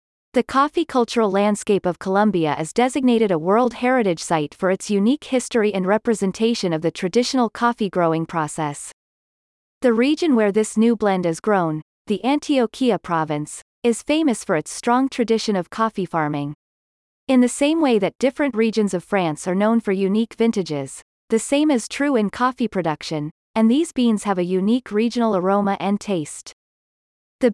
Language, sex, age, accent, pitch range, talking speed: English, female, 30-49, American, 180-245 Hz, 165 wpm